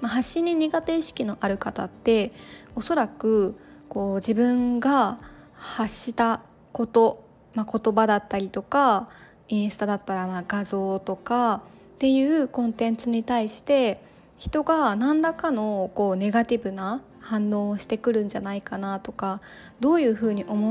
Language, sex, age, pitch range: Japanese, female, 20-39, 195-245 Hz